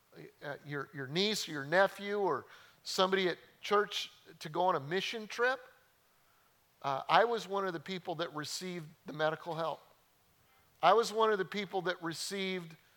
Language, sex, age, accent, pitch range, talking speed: English, male, 50-69, American, 155-200 Hz, 170 wpm